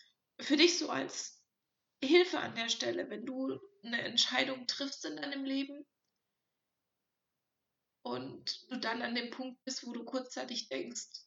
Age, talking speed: 30-49, 145 wpm